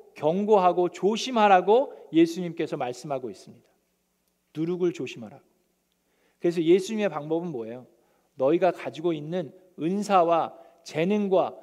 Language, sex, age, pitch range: Korean, male, 40-59, 165-220 Hz